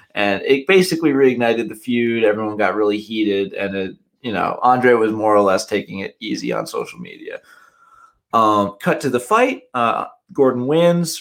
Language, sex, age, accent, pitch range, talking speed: English, male, 20-39, American, 105-135 Hz, 170 wpm